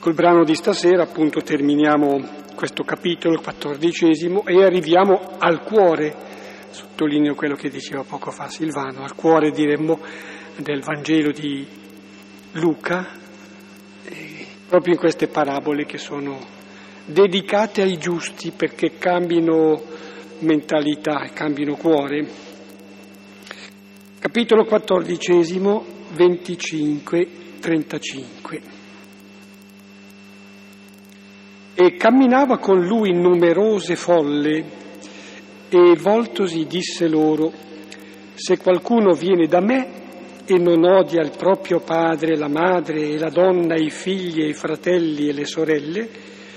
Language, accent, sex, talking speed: Italian, native, male, 100 wpm